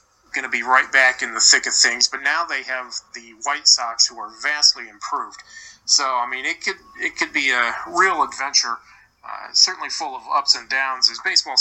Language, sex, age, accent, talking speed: English, male, 30-49, American, 210 wpm